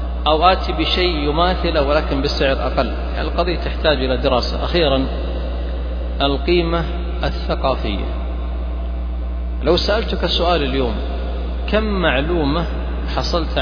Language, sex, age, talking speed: Arabic, male, 40-59, 95 wpm